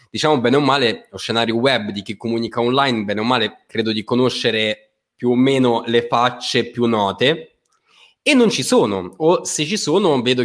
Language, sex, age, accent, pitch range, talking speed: Italian, male, 20-39, native, 110-125 Hz, 190 wpm